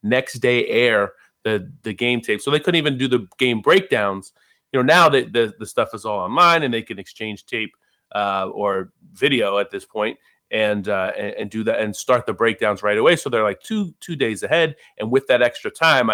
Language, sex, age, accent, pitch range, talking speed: English, male, 30-49, American, 100-120 Hz, 225 wpm